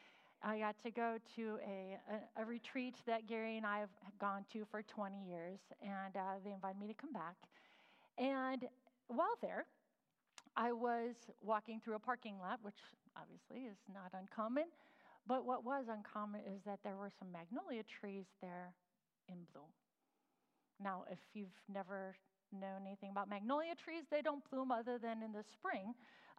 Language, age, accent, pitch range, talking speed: English, 40-59, American, 200-250 Hz, 170 wpm